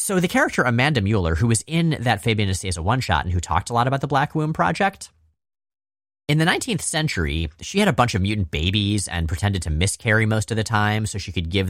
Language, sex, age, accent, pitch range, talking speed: English, male, 30-49, American, 85-120 Hz, 235 wpm